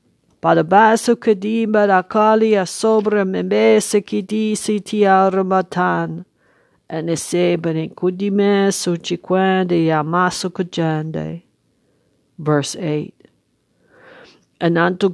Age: 50-69